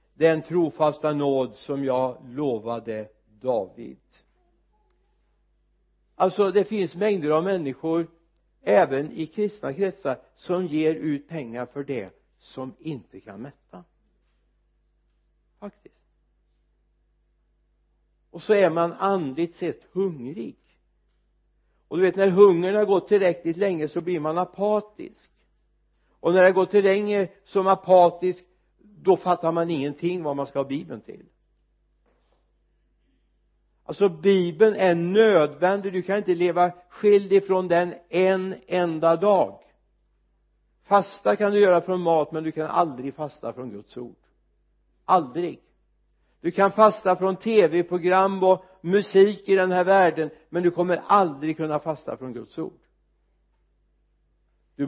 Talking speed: 130 wpm